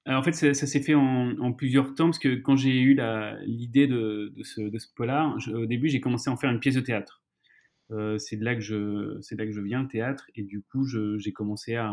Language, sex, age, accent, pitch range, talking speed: French, male, 30-49, French, 105-125 Hz, 285 wpm